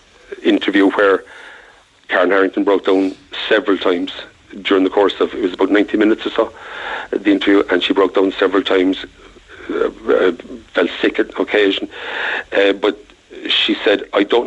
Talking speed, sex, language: 160 wpm, male, English